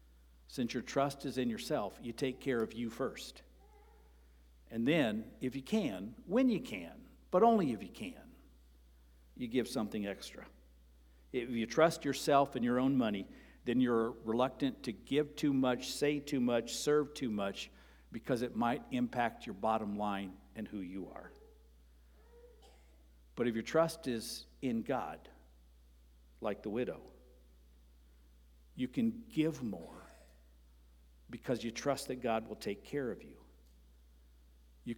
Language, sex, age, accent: English, male, 60-79, American